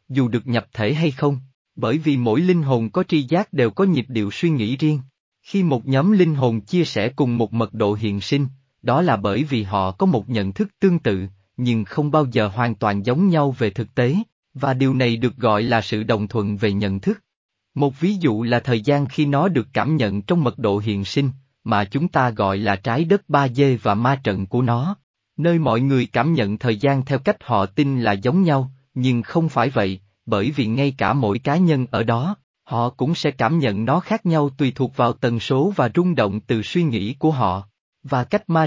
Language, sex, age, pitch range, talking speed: Vietnamese, male, 20-39, 110-150 Hz, 230 wpm